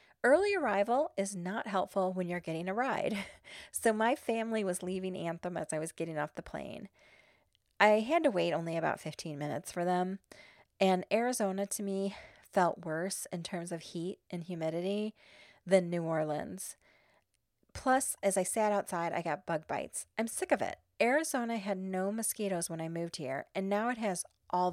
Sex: female